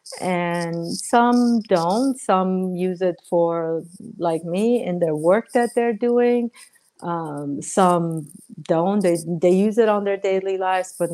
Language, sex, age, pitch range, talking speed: English, female, 50-69, 165-195 Hz, 145 wpm